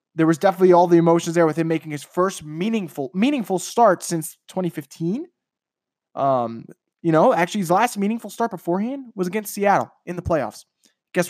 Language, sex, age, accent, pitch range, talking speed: English, male, 20-39, American, 155-200 Hz, 175 wpm